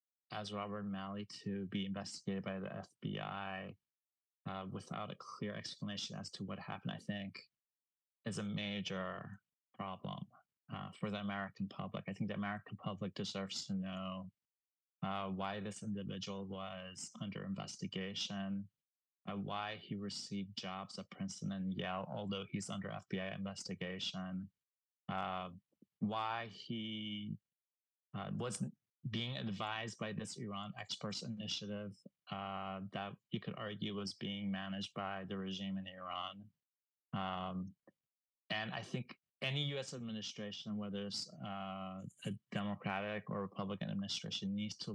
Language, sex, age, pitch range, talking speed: English, male, 20-39, 95-105 Hz, 135 wpm